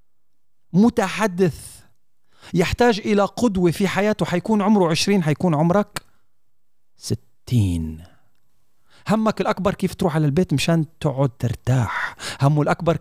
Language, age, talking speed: Arabic, 40-59, 105 wpm